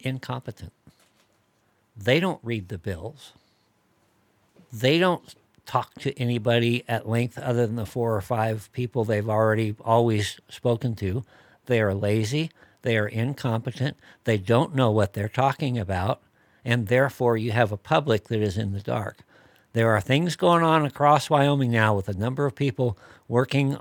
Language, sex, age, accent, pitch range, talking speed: English, male, 60-79, American, 105-130 Hz, 160 wpm